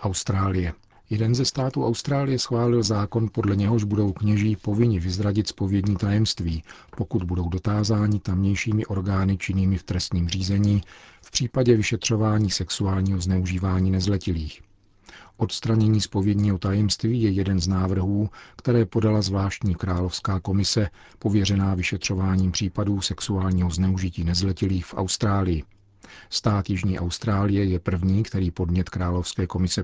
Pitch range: 90-105 Hz